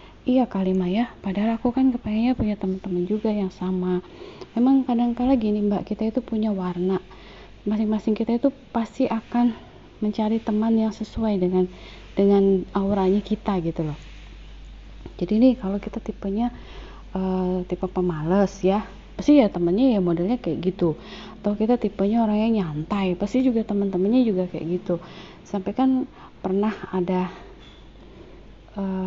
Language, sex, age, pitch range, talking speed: Indonesian, female, 30-49, 185-230 Hz, 140 wpm